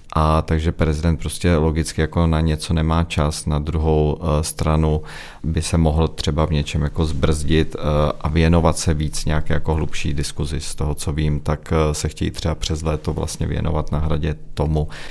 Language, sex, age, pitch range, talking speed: Czech, male, 40-59, 75-85 Hz, 175 wpm